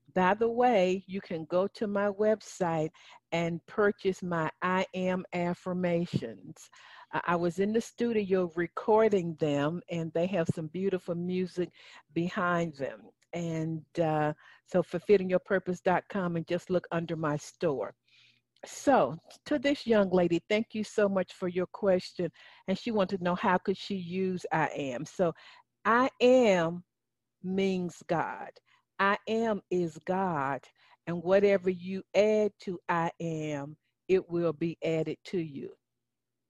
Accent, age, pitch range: American, 50-69, 170-200 Hz